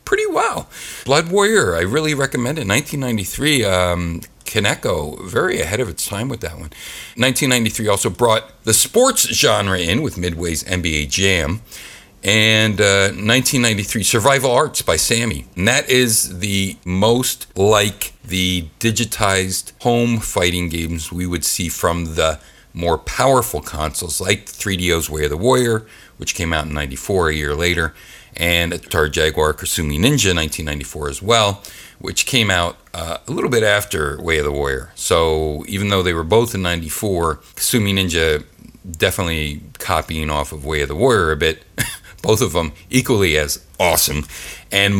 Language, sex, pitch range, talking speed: English, male, 80-115 Hz, 155 wpm